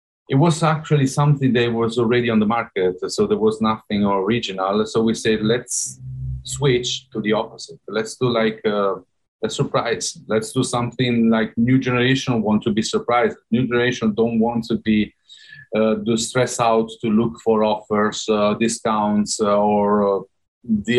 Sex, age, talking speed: male, 40-59, 165 wpm